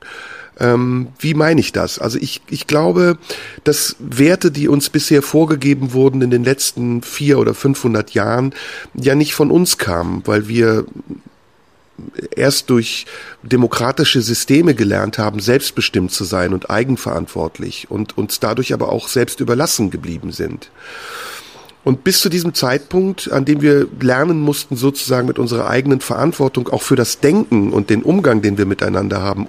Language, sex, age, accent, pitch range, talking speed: German, male, 40-59, German, 115-150 Hz, 155 wpm